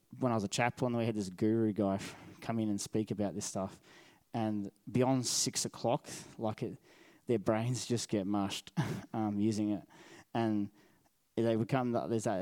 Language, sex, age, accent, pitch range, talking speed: English, male, 20-39, Australian, 105-120 Hz, 185 wpm